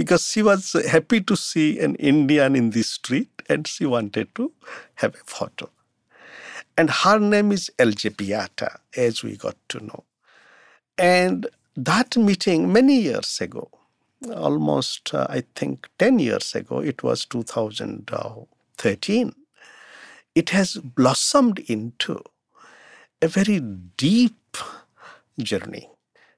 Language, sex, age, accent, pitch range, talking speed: English, male, 50-69, Indian, 130-205 Hz, 120 wpm